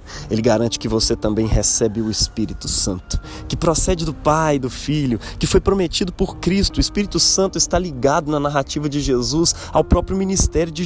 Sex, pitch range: male, 115-155 Hz